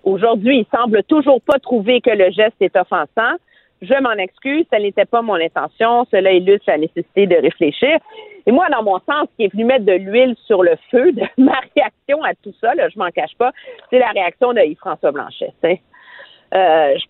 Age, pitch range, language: 50-69, 195-295 Hz, French